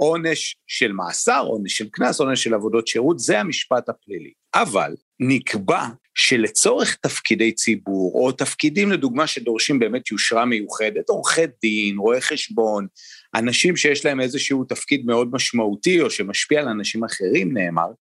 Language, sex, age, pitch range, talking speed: Hebrew, male, 40-59, 120-195 Hz, 140 wpm